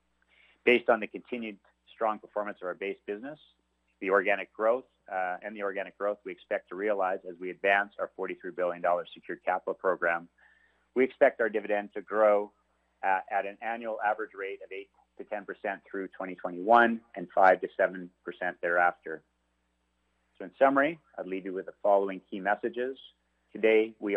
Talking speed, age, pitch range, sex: 165 wpm, 40-59, 90-105 Hz, male